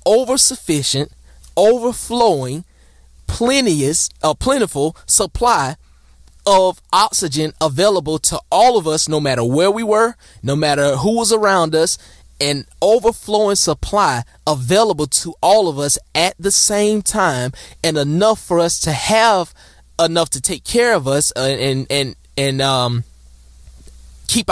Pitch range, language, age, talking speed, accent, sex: 130-195 Hz, English, 20-39, 135 wpm, American, male